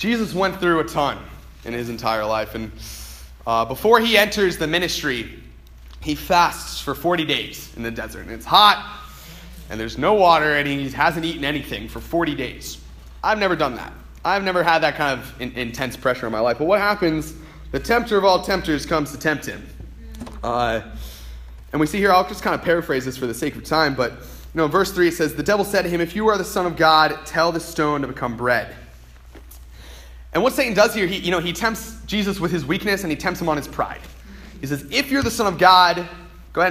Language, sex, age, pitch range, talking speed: English, male, 30-49, 110-170 Hz, 225 wpm